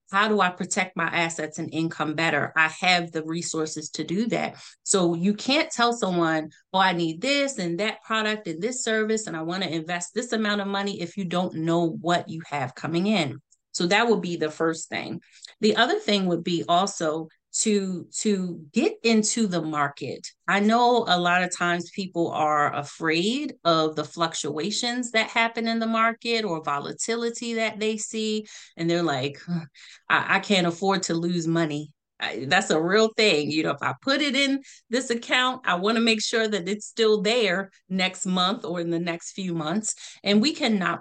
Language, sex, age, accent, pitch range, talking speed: English, female, 30-49, American, 165-215 Hz, 195 wpm